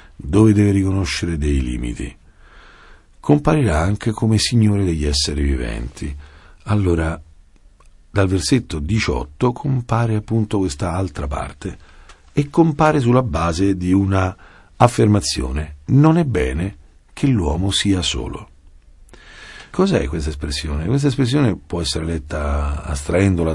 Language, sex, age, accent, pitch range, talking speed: Italian, male, 50-69, native, 75-110 Hz, 110 wpm